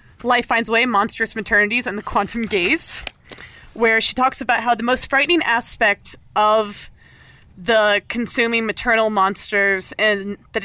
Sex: female